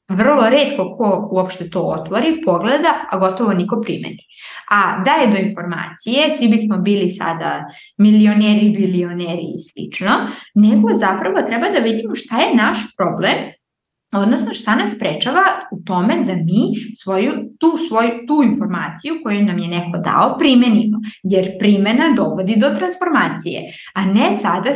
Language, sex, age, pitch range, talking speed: English, female, 20-39, 195-270 Hz, 145 wpm